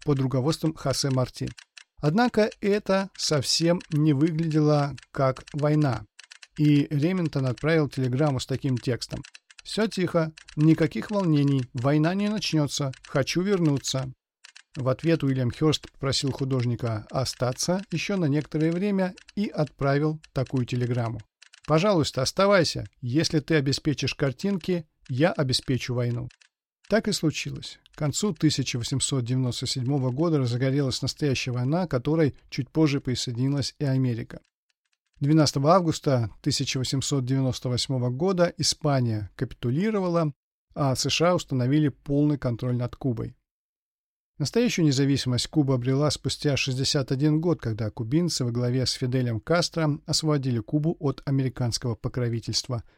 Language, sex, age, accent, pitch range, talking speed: Russian, male, 50-69, native, 125-155 Hz, 110 wpm